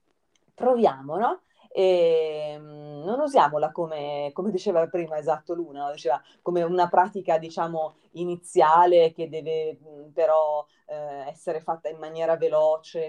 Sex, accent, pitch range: female, native, 150-185 Hz